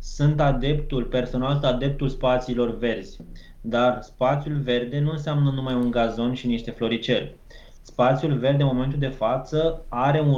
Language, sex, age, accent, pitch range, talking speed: Romanian, male, 20-39, native, 125-150 Hz, 145 wpm